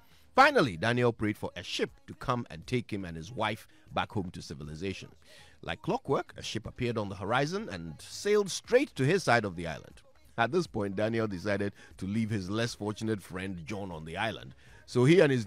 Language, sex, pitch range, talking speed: English, male, 100-150 Hz, 210 wpm